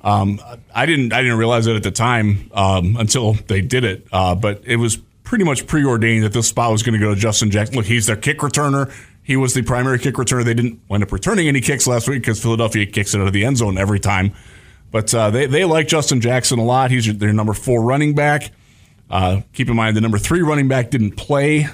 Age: 20-39